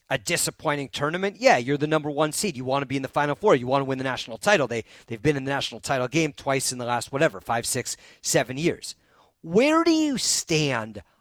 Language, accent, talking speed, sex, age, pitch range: English, American, 245 wpm, male, 40-59, 145-200 Hz